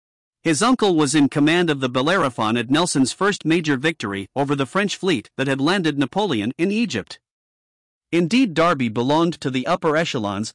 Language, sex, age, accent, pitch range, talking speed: English, male, 50-69, American, 130-175 Hz, 170 wpm